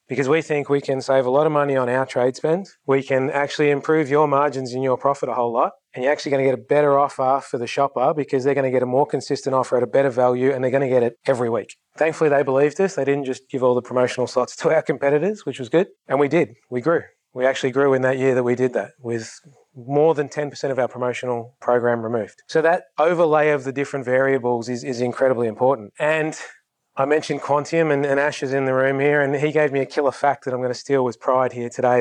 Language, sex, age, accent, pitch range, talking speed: English, male, 20-39, Australian, 130-155 Hz, 260 wpm